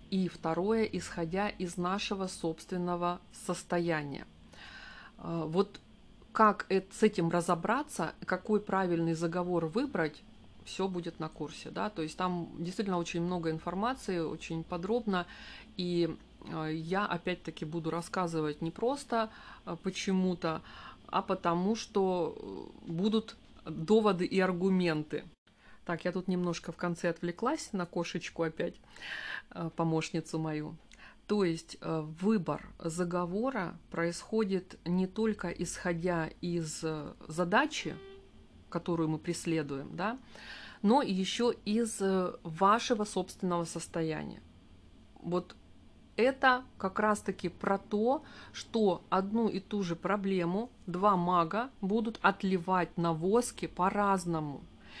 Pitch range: 165-205 Hz